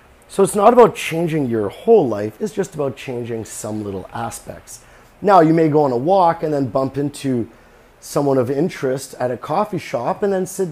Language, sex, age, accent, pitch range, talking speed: English, male, 30-49, American, 115-150 Hz, 200 wpm